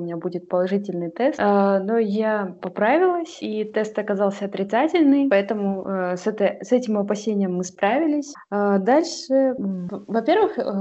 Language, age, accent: Russian, 20-39, native